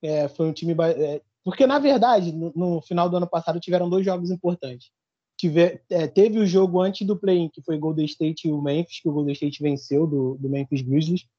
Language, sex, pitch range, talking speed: Portuguese, male, 150-205 Hz, 225 wpm